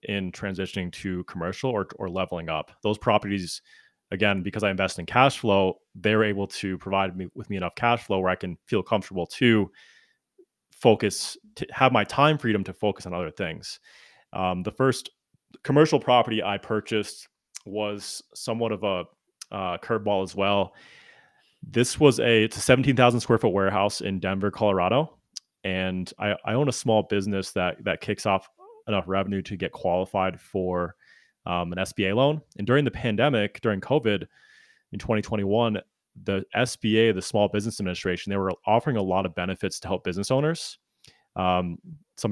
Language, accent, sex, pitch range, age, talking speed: English, American, male, 95-120 Hz, 20-39, 170 wpm